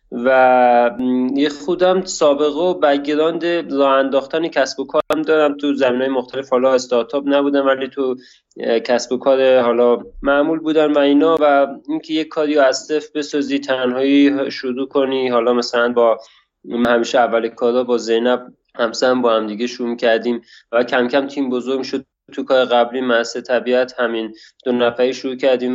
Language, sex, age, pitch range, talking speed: Persian, male, 20-39, 120-140 Hz, 155 wpm